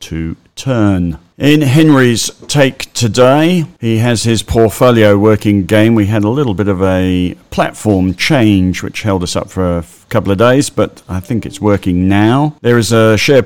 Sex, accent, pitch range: male, British, 90-115 Hz